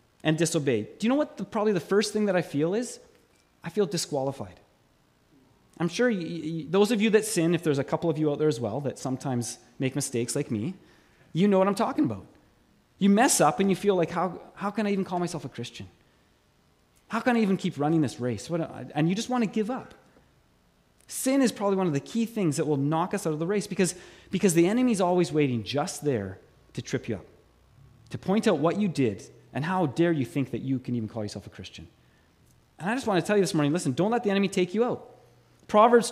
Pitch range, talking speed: 125-205 Hz, 245 wpm